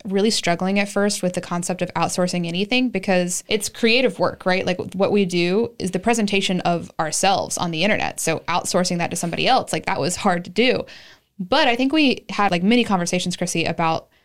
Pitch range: 175-200 Hz